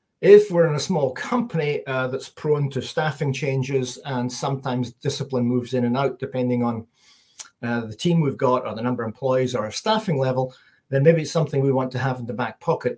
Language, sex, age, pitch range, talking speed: English, male, 40-59, 125-155 Hz, 215 wpm